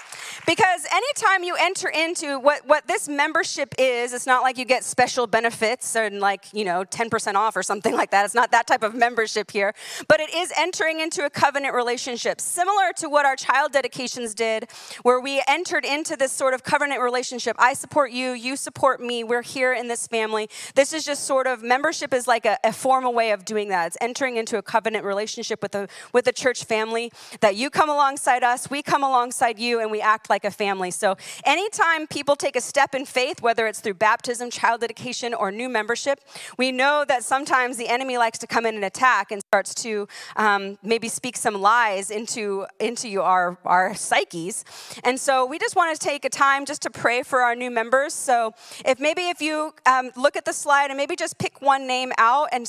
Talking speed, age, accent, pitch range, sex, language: 215 wpm, 30-49, American, 215-275 Hz, female, English